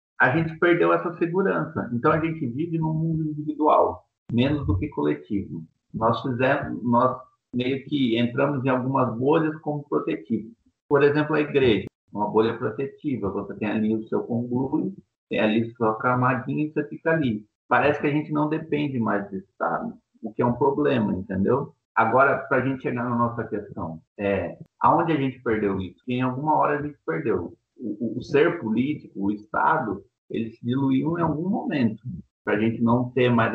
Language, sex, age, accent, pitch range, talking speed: Portuguese, male, 50-69, Brazilian, 110-150 Hz, 185 wpm